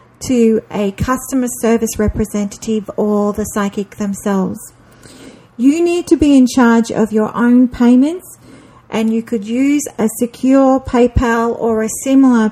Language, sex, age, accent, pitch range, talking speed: English, female, 50-69, Australian, 210-255 Hz, 140 wpm